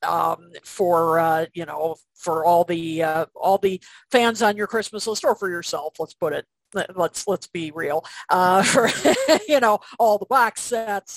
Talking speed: 185 wpm